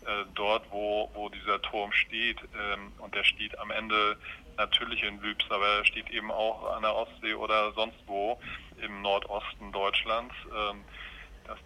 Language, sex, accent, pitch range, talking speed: German, male, German, 100-110 Hz, 150 wpm